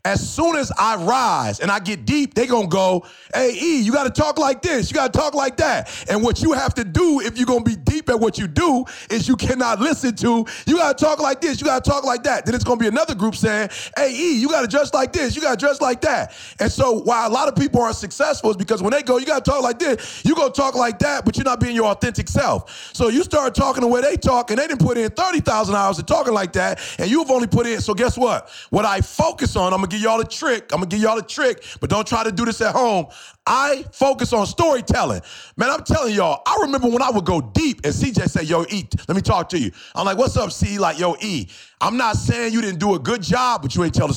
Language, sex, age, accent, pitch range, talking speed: English, male, 30-49, American, 205-275 Hz, 275 wpm